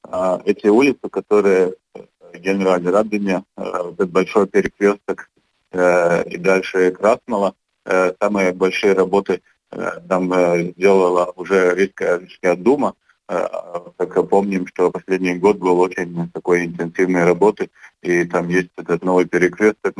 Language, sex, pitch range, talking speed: Russian, male, 90-95 Hz, 110 wpm